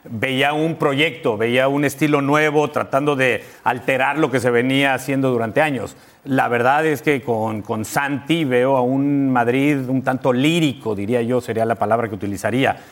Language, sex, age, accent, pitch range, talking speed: English, male, 40-59, Mexican, 130-180 Hz, 175 wpm